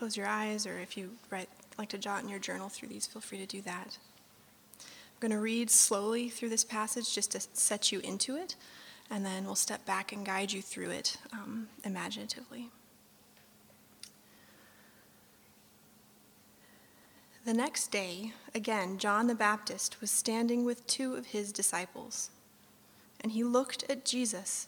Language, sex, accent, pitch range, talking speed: English, female, American, 200-245 Hz, 155 wpm